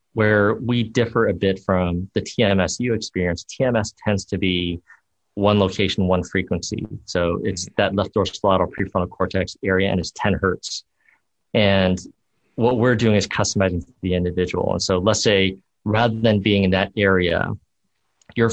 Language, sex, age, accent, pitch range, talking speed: English, male, 40-59, American, 90-105 Hz, 160 wpm